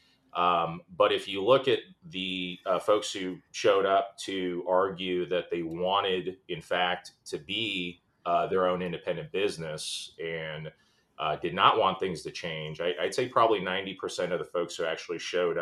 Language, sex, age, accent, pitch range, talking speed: English, male, 30-49, American, 85-95 Hz, 175 wpm